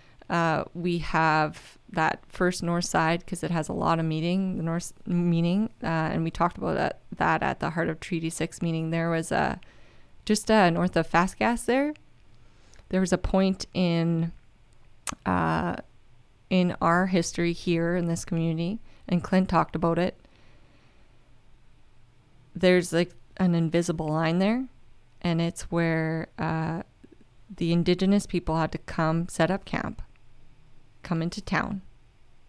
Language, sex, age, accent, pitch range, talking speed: English, female, 20-39, American, 130-180 Hz, 150 wpm